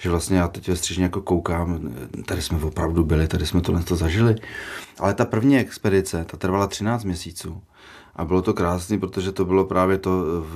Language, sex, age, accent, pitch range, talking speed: Czech, male, 30-49, native, 85-95 Hz, 195 wpm